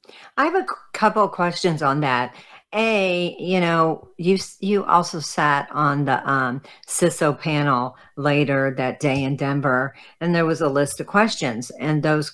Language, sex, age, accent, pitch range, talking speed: English, female, 50-69, American, 135-175 Hz, 165 wpm